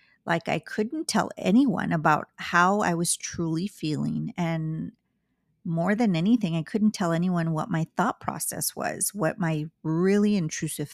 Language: English